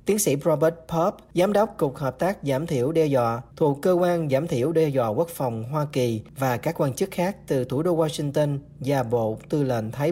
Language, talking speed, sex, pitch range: Vietnamese, 225 wpm, male, 125-160 Hz